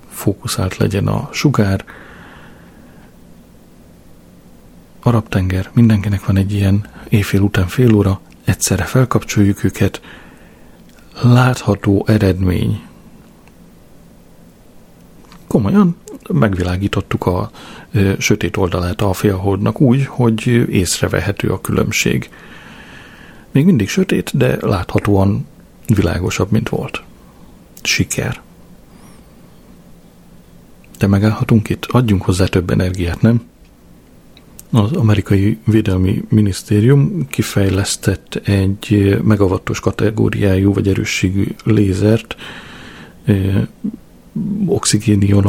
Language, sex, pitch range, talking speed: Hungarian, male, 95-115 Hz, 80 wpm